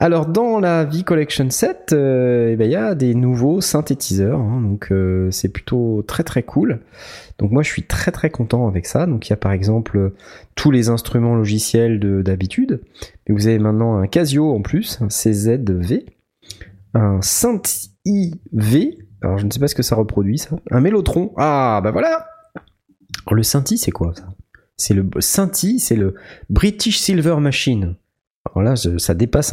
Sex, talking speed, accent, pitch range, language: male, 180 wpm, French, 100-155 Hz, French